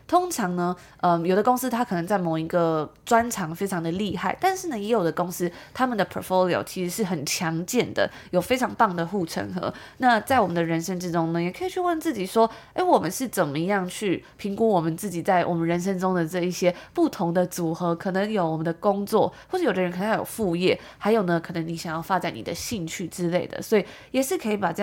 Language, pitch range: Chinese, 175-220 Hz